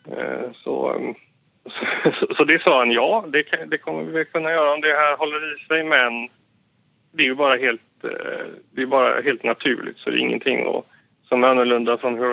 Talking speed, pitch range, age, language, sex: 195 wpm, 120-140 Hz, 30-49, Swedish, male